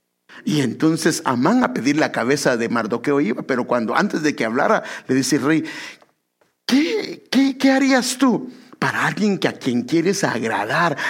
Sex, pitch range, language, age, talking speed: male, 130-215 Hz, English, 60-79, 155 wpm